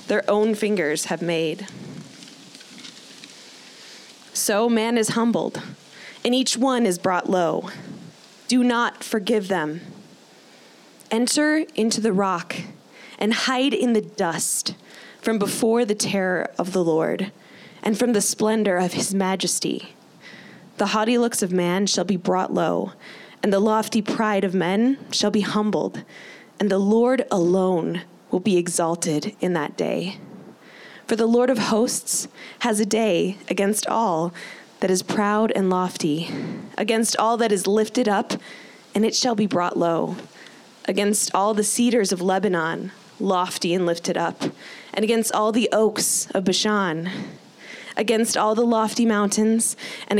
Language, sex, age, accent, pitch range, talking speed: English, female, 20-39, American, 190-225 Hz, 145 wpm